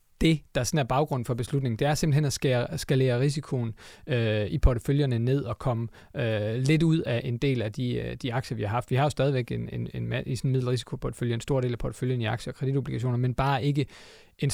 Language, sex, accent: Danish, male, native